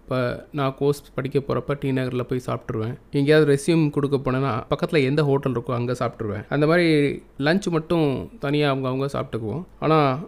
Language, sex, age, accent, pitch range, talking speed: Tamil, male, 20-39, native, 130-155 Hz, 160 wpm